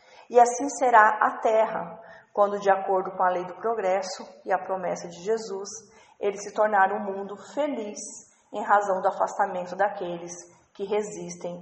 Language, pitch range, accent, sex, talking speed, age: Portuguese, 190-240 Hz, Brazilian, female, 160 wpm, 40-59